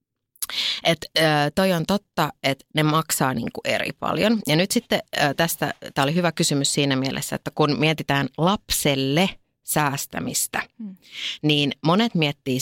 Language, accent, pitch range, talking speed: Finnish, native, 140-190 Hz, 135 wpm